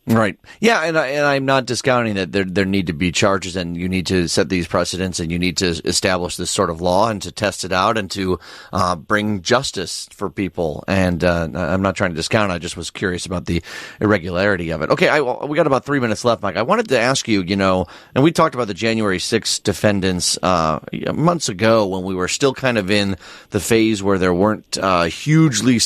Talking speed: 235 wpm